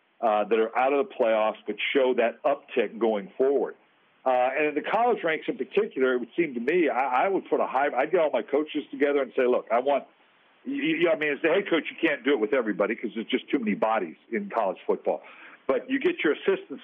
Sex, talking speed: male, 255 wpm